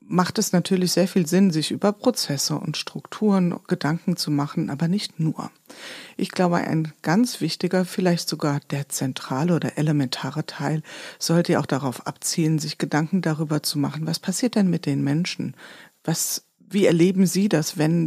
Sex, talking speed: female, 165 wpm